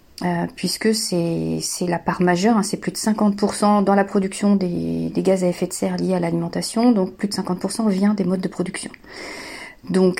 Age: 40-59